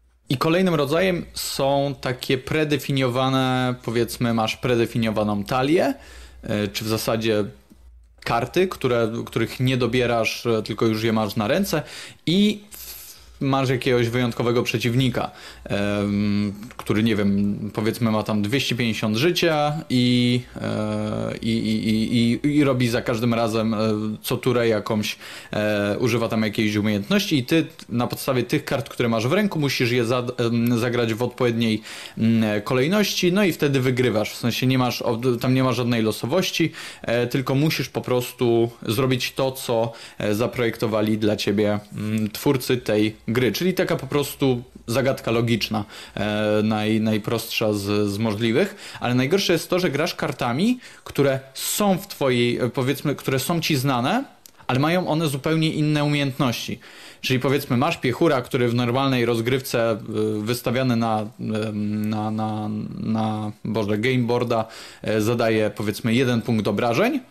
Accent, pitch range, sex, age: native, 110-135 Hz, male, 20-39